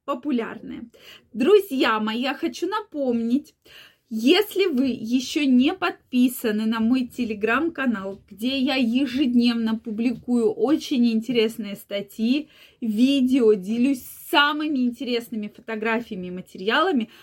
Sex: female